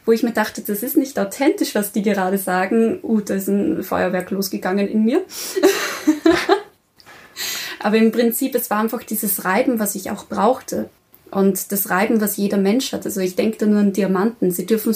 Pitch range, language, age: 190-225 Hz, German, 20-39